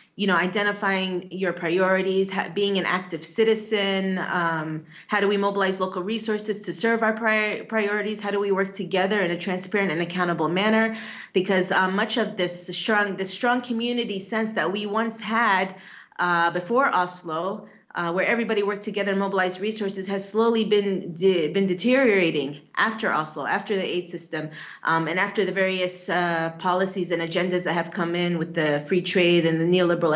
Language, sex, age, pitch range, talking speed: English, female, 30-49, 180-220 Hz, 170 wpm